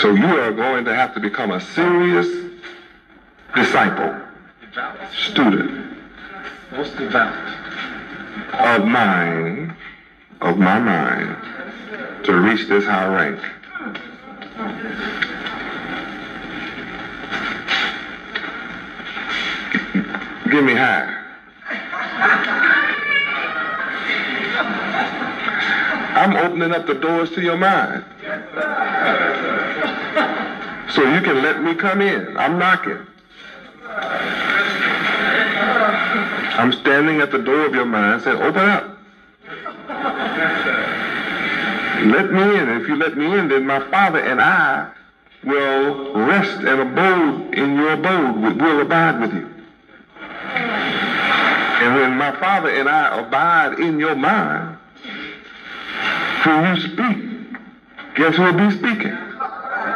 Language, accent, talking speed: English, American, 95 wpm